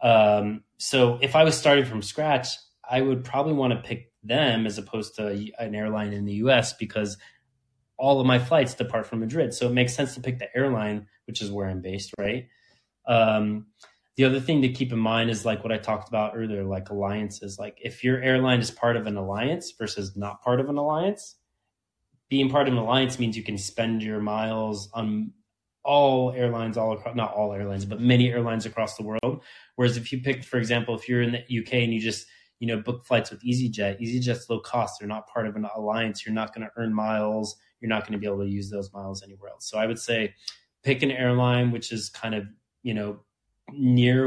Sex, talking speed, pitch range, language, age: male, 220 wpm, 105-125 Hz, English, 20-39